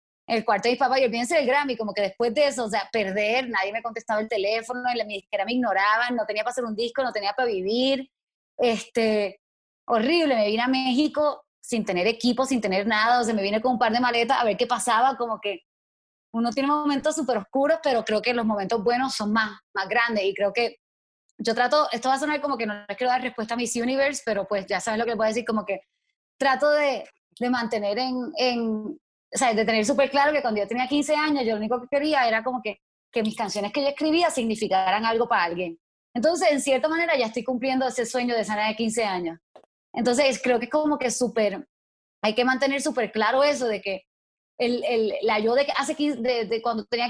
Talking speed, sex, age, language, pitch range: 240 wpm, female, 20-39, Spanish, 215-265 Hz